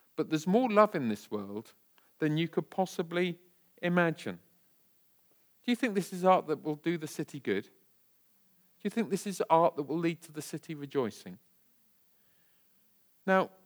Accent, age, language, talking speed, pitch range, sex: British, 50-69, English, 165 wpm, 155-225 Hz, male